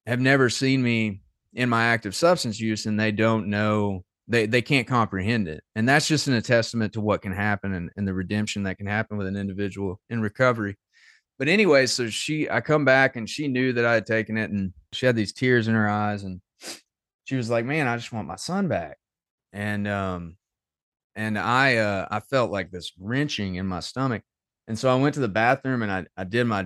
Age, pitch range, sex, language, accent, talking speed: 30-49, 100-120 Hz, male, English, American, 220 wpm